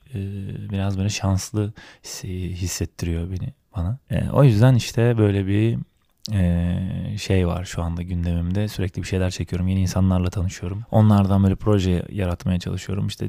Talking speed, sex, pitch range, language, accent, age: 130 wpm, male, 90-105 Hz, Turkish, native, 20-39